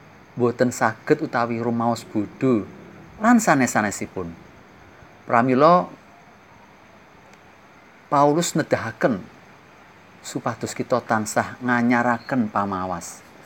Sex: male